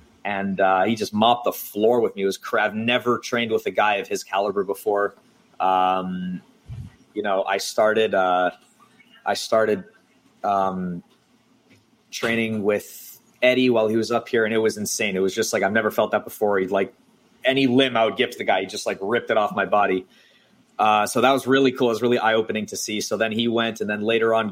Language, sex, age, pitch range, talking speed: English, male, 30-49, 95-120 Hz, 225 wpm